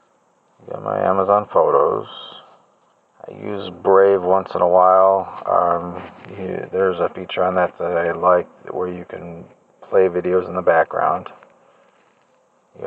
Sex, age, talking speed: male, 40-59, 145 wpm